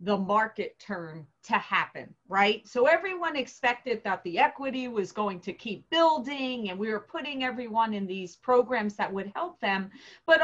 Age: 40-59